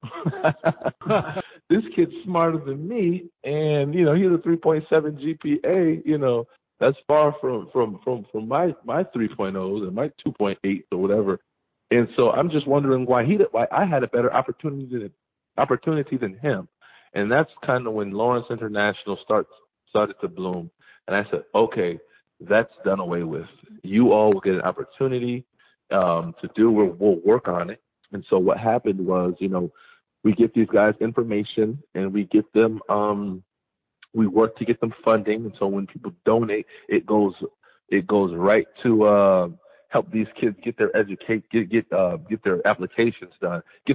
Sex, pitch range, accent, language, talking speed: male, 100-145 Hz, American, English, 180 wpm